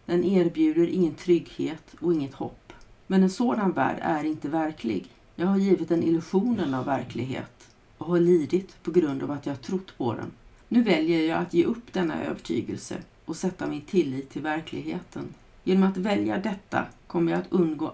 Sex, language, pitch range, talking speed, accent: female, Swedish, 155-185 Hz, 185 wpm, native